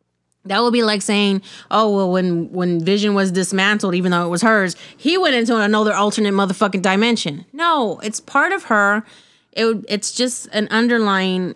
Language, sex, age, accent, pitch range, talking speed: English, female, 30-49, American, 160-215 Hz, 175 wpm